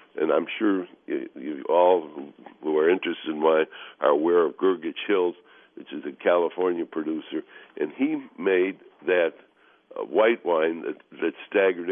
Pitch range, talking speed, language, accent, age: 315-430 Hz, 150 wpm, English, American, 60-79